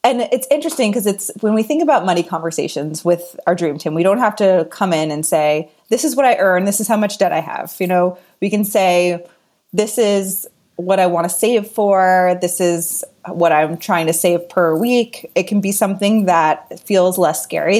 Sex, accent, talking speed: female, American, 220 wpm